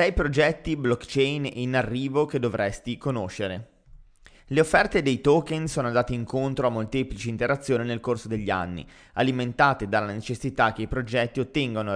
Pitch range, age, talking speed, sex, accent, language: 115-145 Hz, 20-39, 140 wpm, male, native, Italian